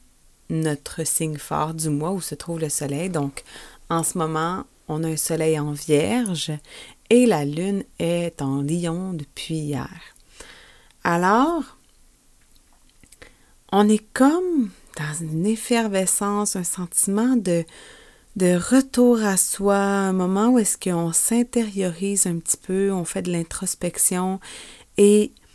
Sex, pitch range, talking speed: female, 165-210 Hz, 130 wpm